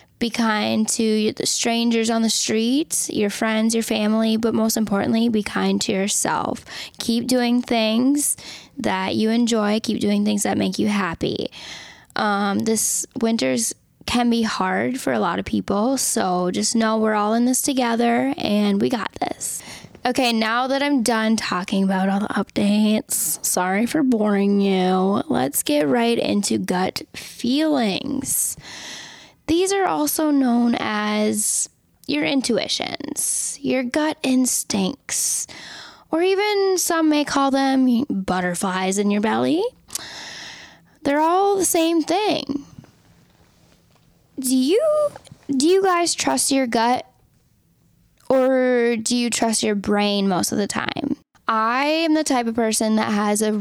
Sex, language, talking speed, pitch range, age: female, English, 140 wpm, 210-270 Hz, 10-29